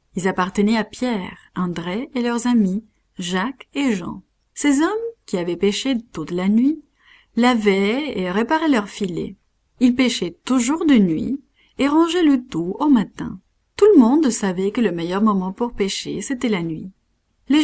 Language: English